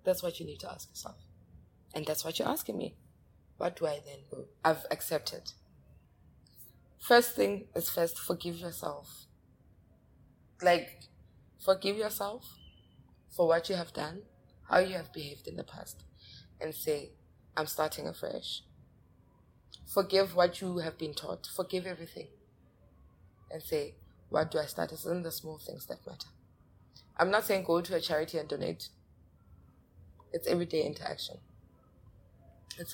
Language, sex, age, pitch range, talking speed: English, female, 20-39, 110-180 Hz, 145 wpm